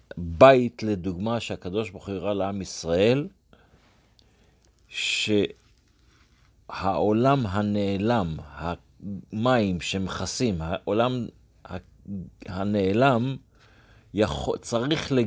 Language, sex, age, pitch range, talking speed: Hebrew, male, 50-69, 95-125 Hz, 60 wpm